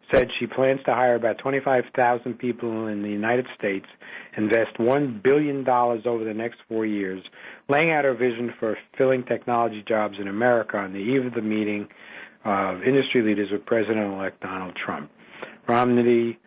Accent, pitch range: American, 100-120 Hz